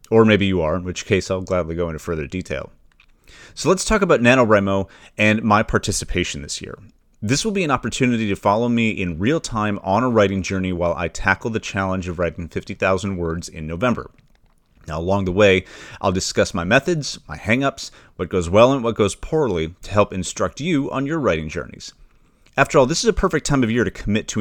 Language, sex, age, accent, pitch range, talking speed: English, male, 30-49, American, 90-115 Hz, 210 wpm